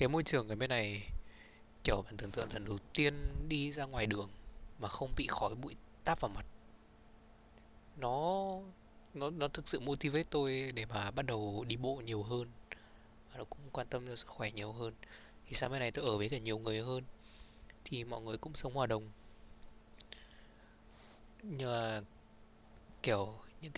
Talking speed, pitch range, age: 175 wpm, 110-140 Hz, 20-39